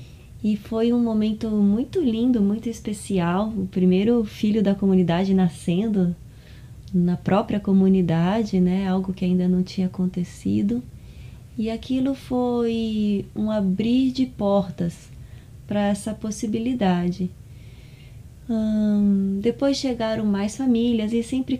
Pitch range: 180-215 Hz